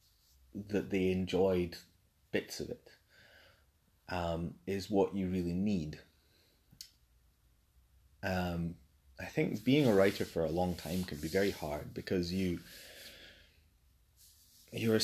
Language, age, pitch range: English, 30-49, 85-110 Hz